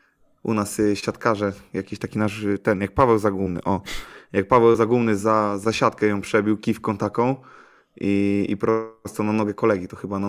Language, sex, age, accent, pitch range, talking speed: Polish, male, 20-39, native, 105-120 Hz, 175 wpm